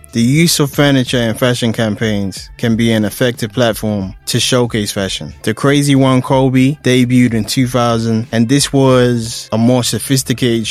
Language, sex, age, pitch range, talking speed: English, male, 20-39, 115-130 Hz, 155 wpm